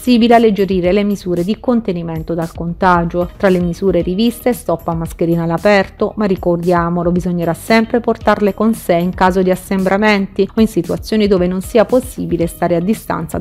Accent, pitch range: native, 175-220 Hz